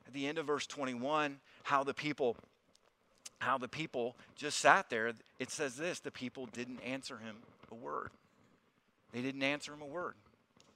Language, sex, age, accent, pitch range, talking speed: English, male, 40-59, American, 145-235 Hz, 165 wpm